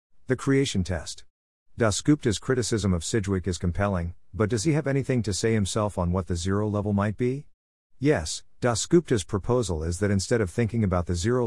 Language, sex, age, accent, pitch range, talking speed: English, male, 50-69, American, 90-115 Hz, 185 wpm